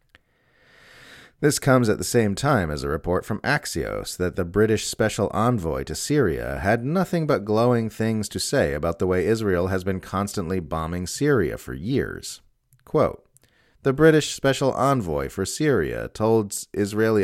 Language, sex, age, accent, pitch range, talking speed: English, male, 30-49, American, 90-125 Hz, 155 wpm